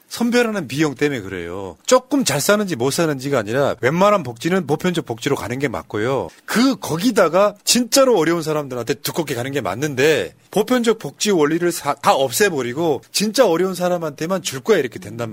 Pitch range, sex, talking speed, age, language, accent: 140-200 Hz, male, 150 wpm, 40-59, English, Korean